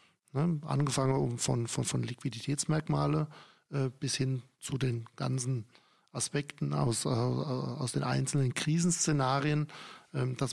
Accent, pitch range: German, 130-150 Hz